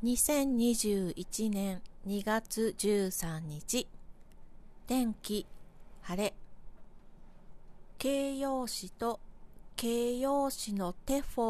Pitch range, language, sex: 180-245 Hz, Japanese, female